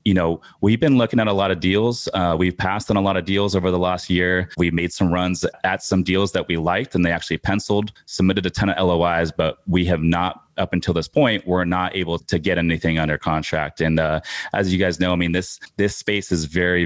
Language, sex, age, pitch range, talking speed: English, male, 30-49, 85-95 Hz, 250 wpm